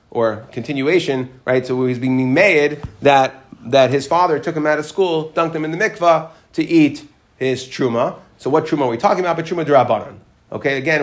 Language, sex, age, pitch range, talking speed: English, male, 30-49, 125-165 Hz, 200 wpm